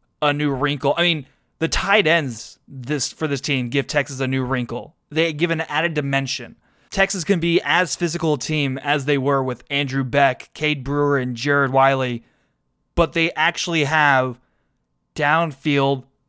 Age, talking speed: 20-39, 165 wpm